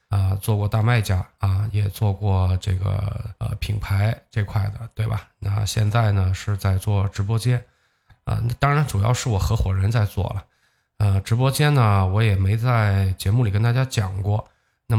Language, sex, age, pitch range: Chinese, male, 20-39, 100-115 Hz